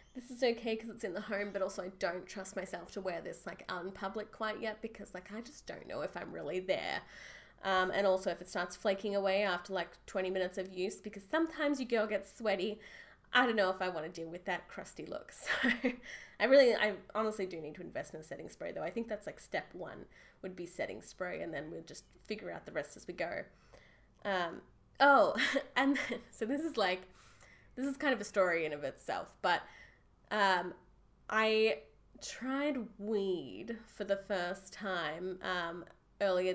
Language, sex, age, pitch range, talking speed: English, female, 20-39, 190-235 Hz, 210 wpm